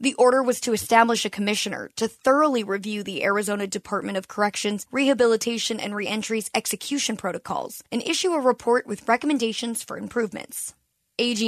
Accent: American